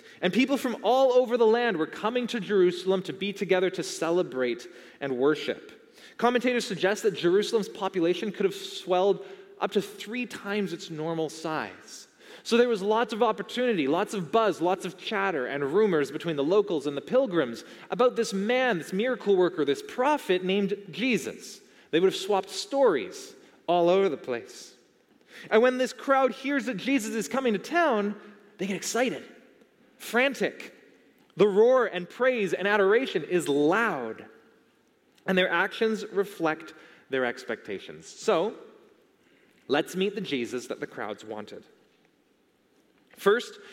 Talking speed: 150 wpm